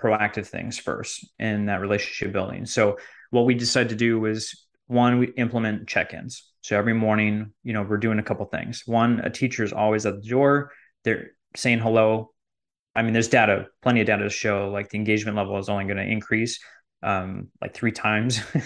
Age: 20-39